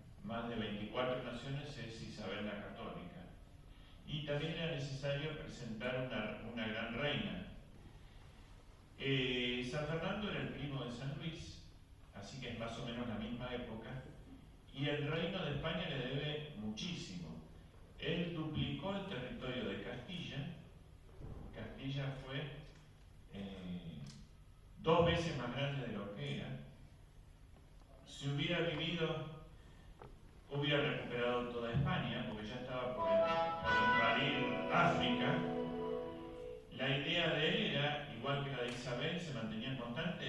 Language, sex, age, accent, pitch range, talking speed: Spanish, male, 40-59, Argentinian, 100-145 Hz, 130 wpm